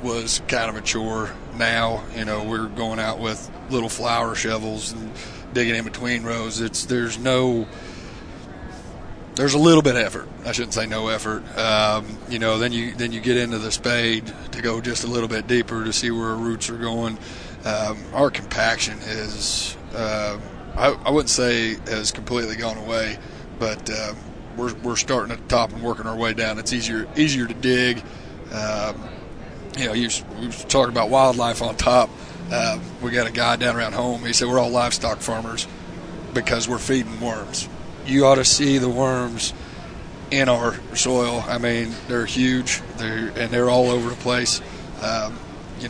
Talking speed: 185 wpm